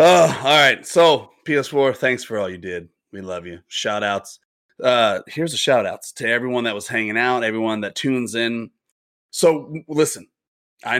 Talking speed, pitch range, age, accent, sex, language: 170 wpm, 110-140 Hz, 30-49, American, male, English